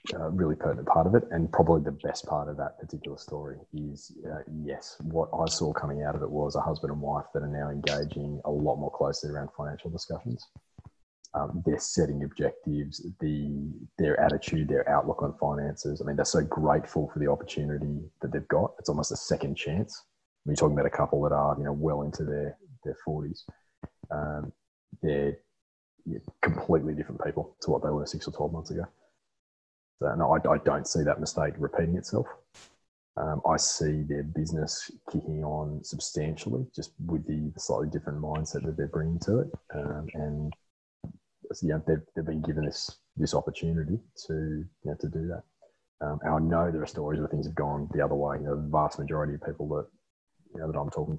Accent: Australian